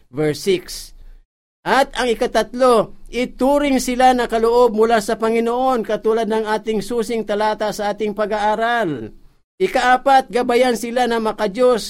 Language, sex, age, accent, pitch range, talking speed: Filipino, male, 50-69, native, 145-210 Hz, 125 wpm